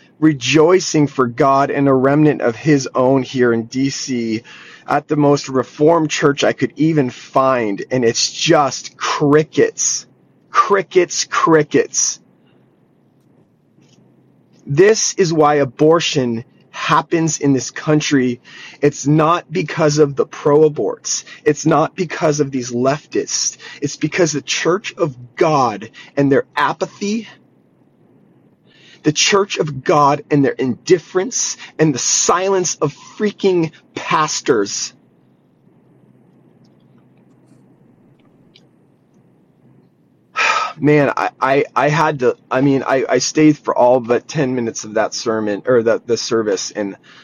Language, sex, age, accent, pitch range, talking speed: English, male, 30-49, American, 125-160 Hz, 120 wpm